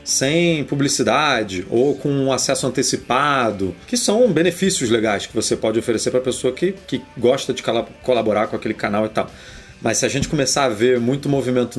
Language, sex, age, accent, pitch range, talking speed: Portuguese, male, 30-49, Brazilian, 115-140 Hz, 180 wpm